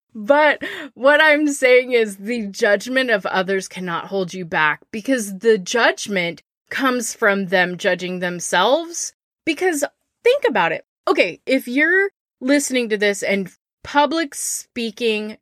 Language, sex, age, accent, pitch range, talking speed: English, female, 20-39, American, 180-235 Hz, 130 wpm